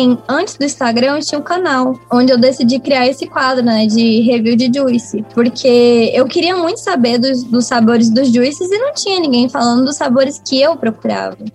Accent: Brazilian